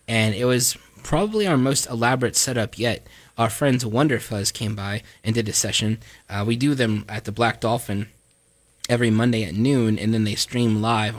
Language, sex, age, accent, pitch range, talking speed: English, male, 20-39, American, 110-130 Hz, 190 wpm